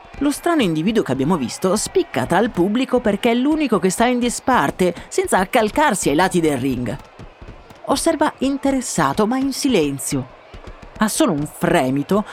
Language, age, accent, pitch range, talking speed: Italian, 30-49, native, 150-235 Hz, 155 wpm